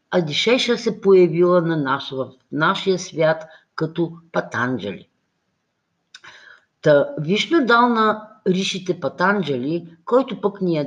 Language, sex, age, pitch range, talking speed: Bulgarian, female, 50-69, 145-200 Hz, 115 wpm